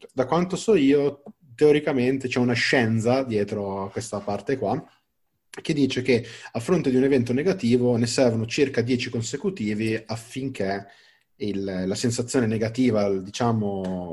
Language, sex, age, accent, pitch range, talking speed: Italian, male, 30-49, native, 100-125 Hz, 140 wpm